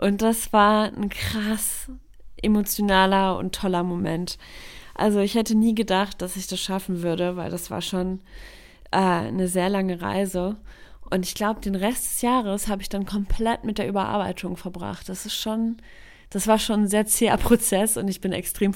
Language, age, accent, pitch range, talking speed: German, 20-39, German, 185-225 Hz, 180 wpm